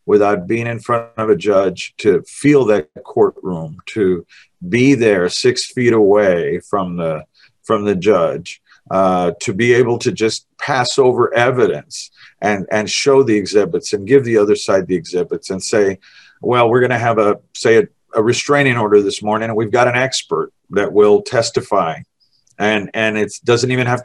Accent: American